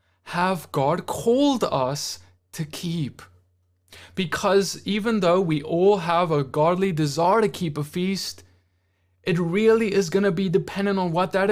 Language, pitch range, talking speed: English, 150-195 Hz, 150 wpm